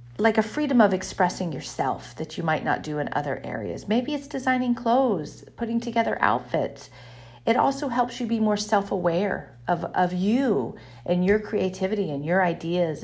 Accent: American